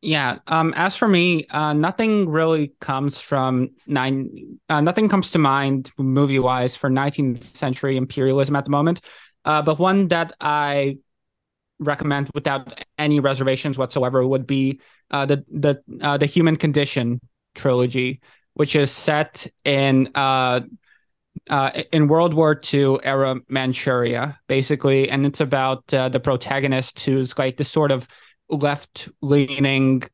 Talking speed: 140 wpm